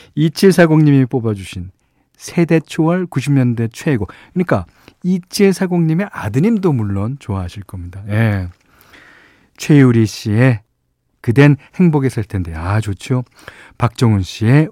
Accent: native